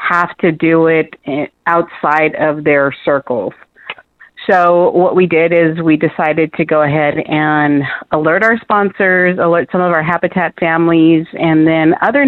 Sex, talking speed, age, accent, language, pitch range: female, 150 wpm, 40-59, American, English, 150-175 Hz